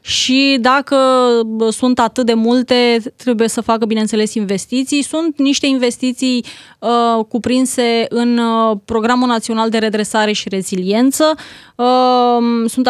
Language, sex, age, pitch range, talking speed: Romanian, female, 20-39, 225-260 Hz, 105 wpm